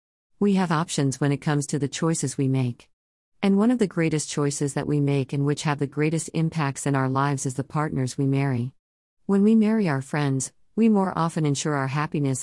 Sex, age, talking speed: female, 50-69, 215 wpm